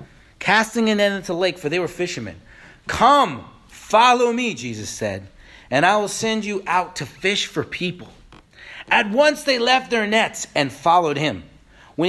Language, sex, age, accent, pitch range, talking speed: English, male, 40-59, American, 145-205 Hz, 175 wpm